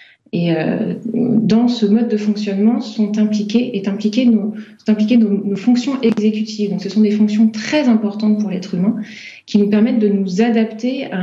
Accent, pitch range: French, 195-220 Hz